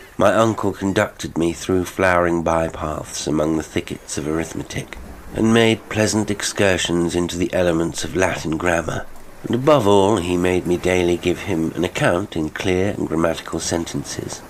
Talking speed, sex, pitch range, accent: 155 wpm, male, 85-100 Hz, British